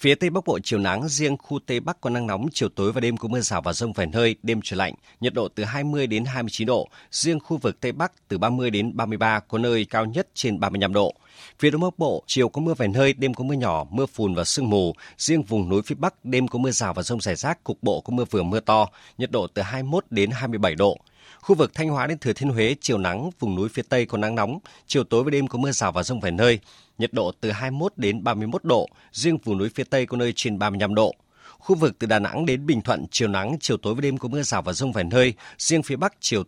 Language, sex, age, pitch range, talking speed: Vietnamese, male, 30-49, 105-135 Hz, 290 wpm